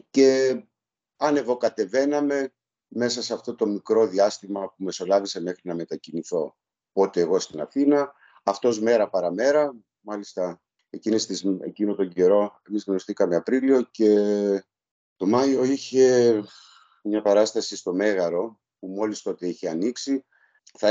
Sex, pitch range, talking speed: male, 100-130 Hz, 120 wpm